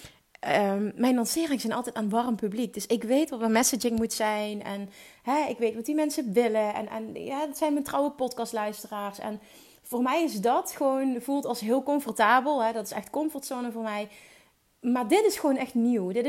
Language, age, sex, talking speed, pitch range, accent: Dutch, 30-49, female, 205 wpm, 225-285 Hz, Dutch